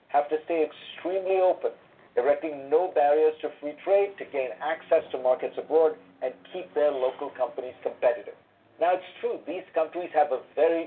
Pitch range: 130-185 Hz